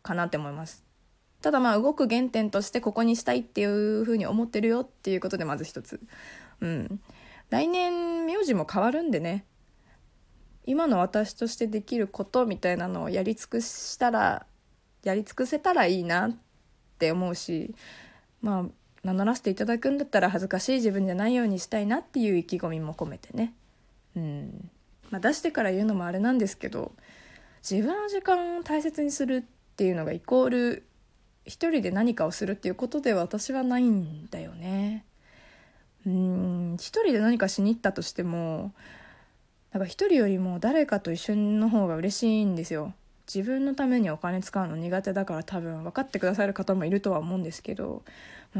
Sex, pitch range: female, 180-245 Hz